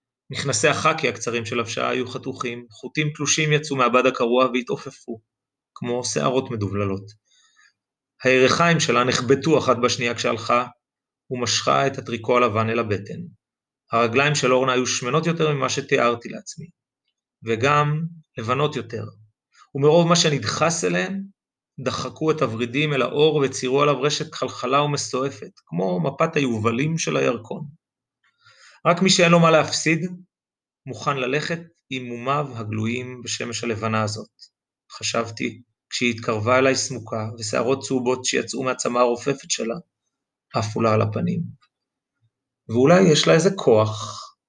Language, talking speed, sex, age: Hebrew, 125 wpm, male, 30-49